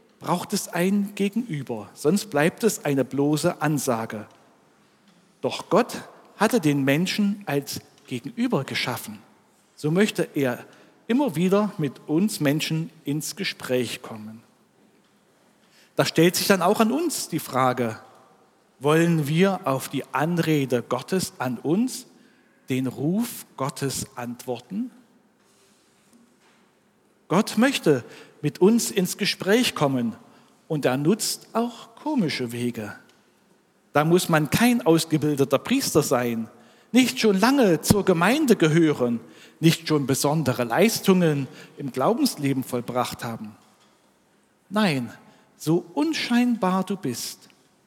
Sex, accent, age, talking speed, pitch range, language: male, German, 50-69, 110 wpm, 135-215 Hz, German